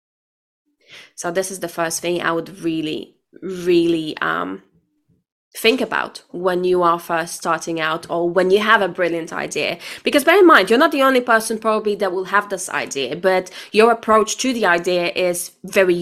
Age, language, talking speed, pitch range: 20-39, English, 185 wpm, 180-225 Hz